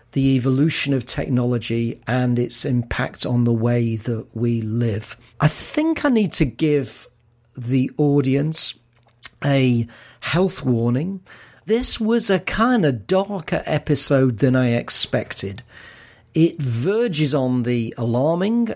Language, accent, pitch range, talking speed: English, British, 120-165 Hz, 125 wpm